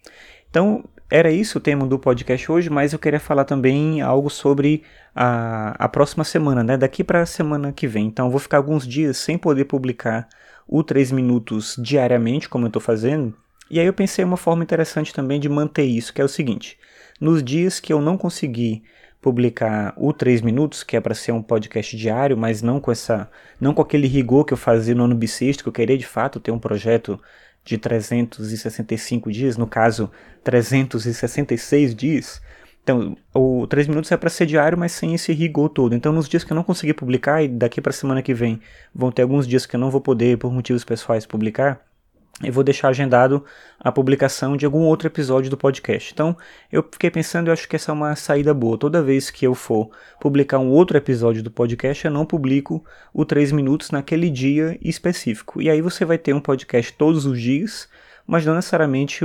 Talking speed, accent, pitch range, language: 200 wpm, Brazilian, 120-155 Hz, Portuguese